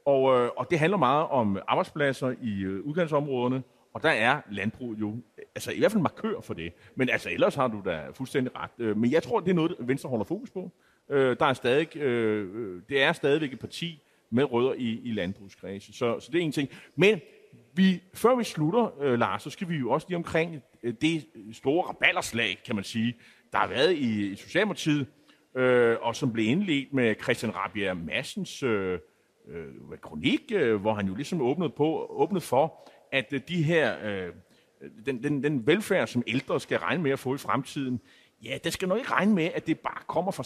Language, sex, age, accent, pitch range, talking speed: Danish, male, 30-49, native, 115-165 Hz, 205 wpm